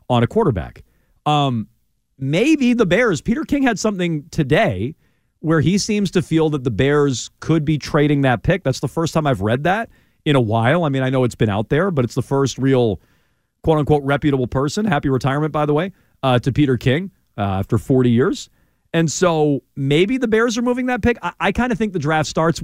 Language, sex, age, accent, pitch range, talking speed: English, male, 40-59, American, 120-165 Hz, 215 wpm